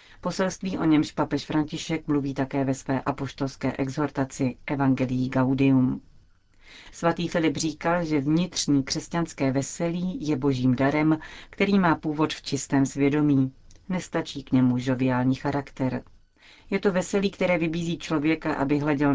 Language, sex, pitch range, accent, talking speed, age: Czech, female, 135-160 Hz, native, 130 wpm, 40-59